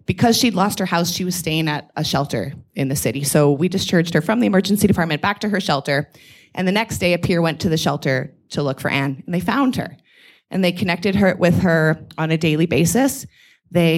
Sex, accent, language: female, American, English